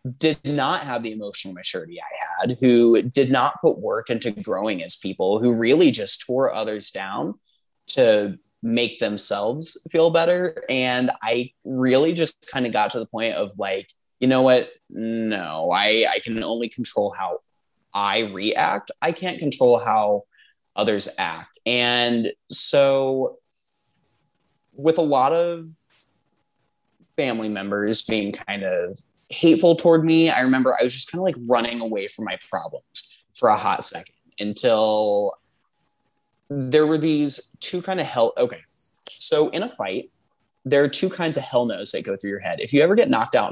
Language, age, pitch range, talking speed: English, 20-39, 110-155 Hz, 165 wpm